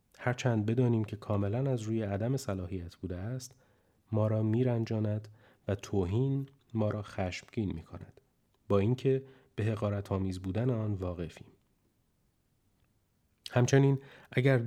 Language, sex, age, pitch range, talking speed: Persian, male, 30-49, 100-125 Hz, 115 wpm